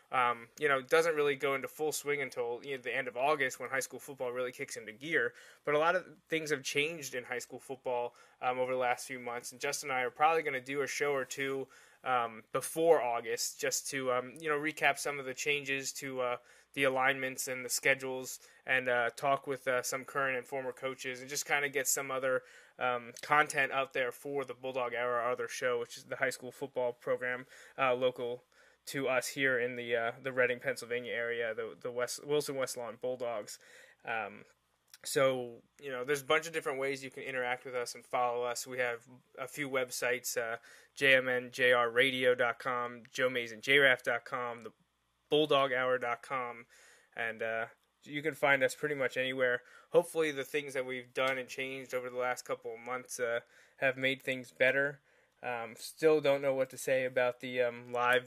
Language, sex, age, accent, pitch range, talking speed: English, male, 20-39, American, 125-145 Hz, 200 wpm